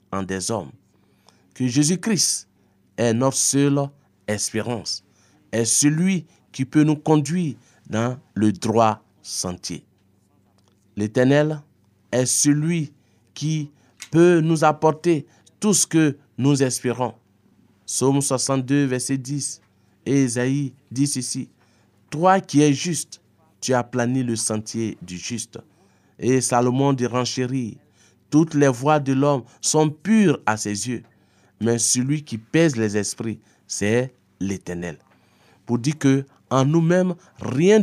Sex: male